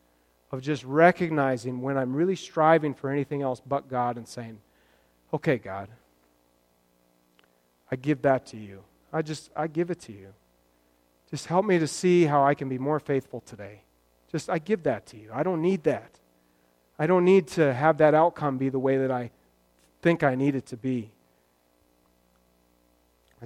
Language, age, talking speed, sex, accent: English, 40-59, 175 wpm, male, American